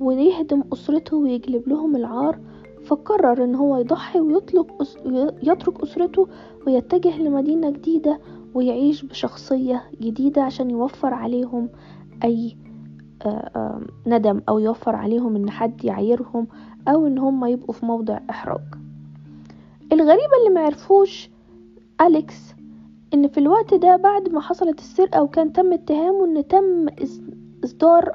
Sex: female